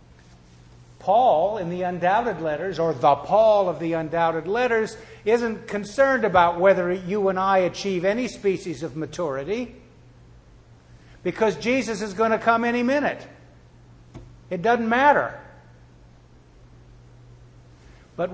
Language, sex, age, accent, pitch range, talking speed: English, male, 60-79, American, 160-215 Hz, 120 wpm